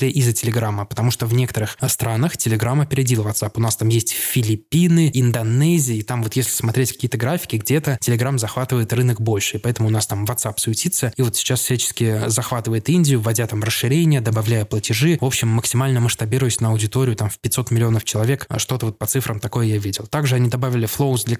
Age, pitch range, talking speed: 20-39, 115-130 Hz, 195 wpm